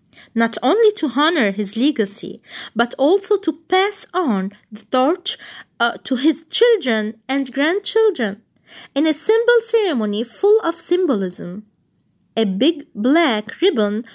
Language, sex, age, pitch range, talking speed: Arabic, female, 20-39, 225-335 Hz, 125 wpm